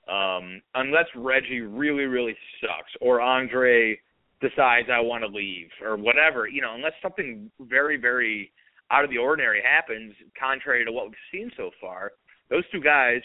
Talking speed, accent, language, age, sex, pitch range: 165 wpm, American, English, 30-49, male, 105-130 Hz